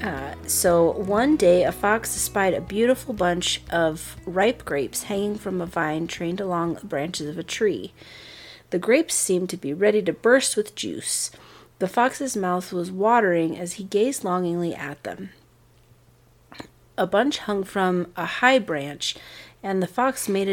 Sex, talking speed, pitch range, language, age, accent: female, 165 wpm, 175-220 Hz, English, 30-49, American